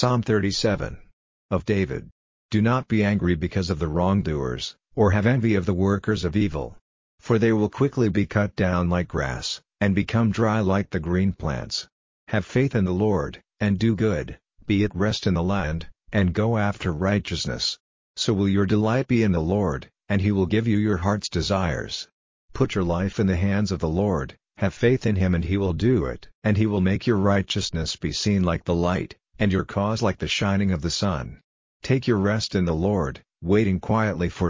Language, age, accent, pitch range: English, 50-69, American, 90-105 Hz